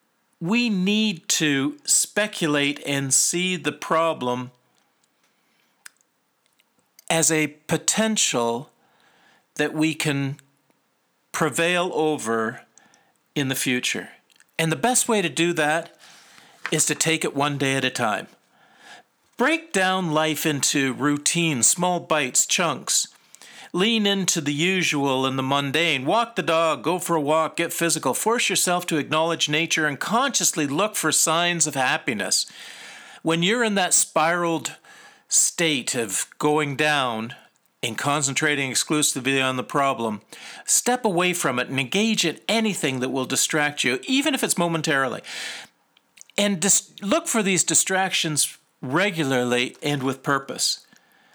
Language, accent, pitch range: English, American, 140-185 Hz